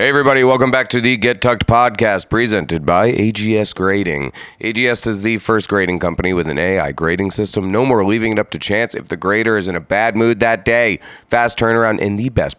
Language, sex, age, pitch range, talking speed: English, male, 30-49, 90-115 Hz, 220 wpm